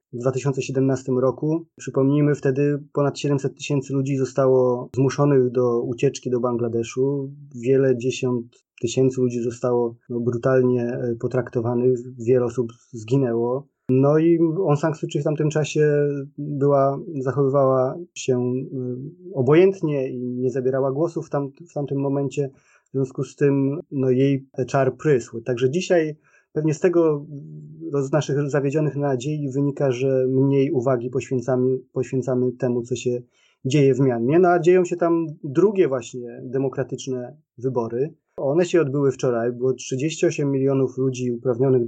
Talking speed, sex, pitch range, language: 125 wpm, male, 130-150 Hz, Polish